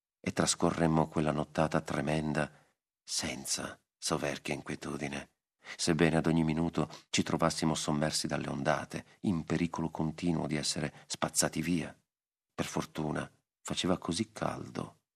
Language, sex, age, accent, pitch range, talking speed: Italian, male, 40-59, native, 80-95 Hz, 115 wpm